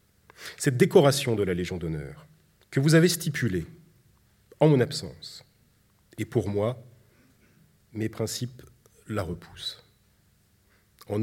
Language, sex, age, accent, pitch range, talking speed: French, male, 40-59, French, 100-125 Hz, 110 wpm